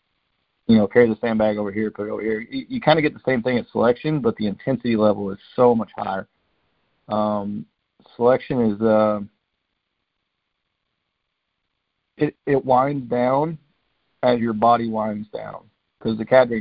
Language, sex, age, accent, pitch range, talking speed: English, male, 40-59, American, 105-125 Hz, 165 wpm